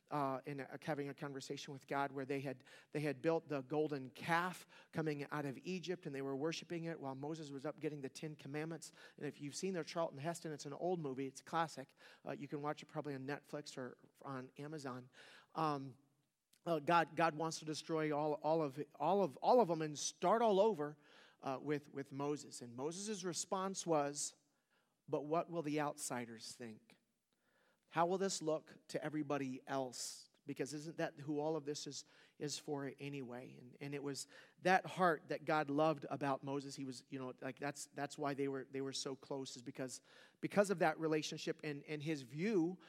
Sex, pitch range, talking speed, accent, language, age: male, 140-160 Hz, 200 wpm, American, English, 40-59